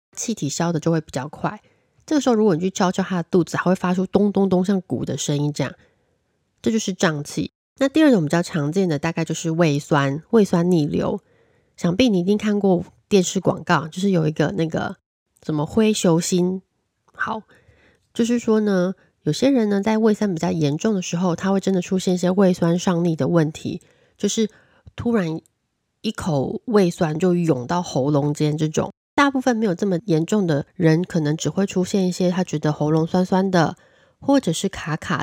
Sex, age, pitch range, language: female, 20-39, 155-200 Hz, Chinese